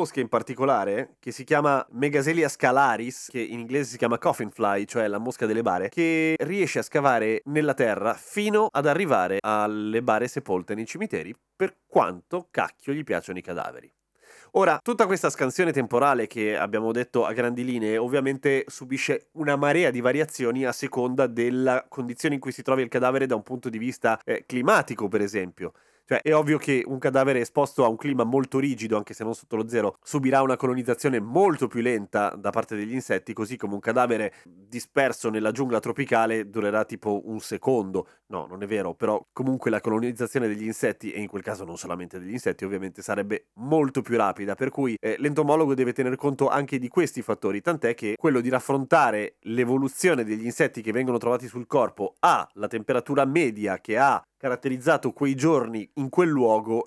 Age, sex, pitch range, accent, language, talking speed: 30-49, male, 115-145 Hz, native, Italian, 185 wpm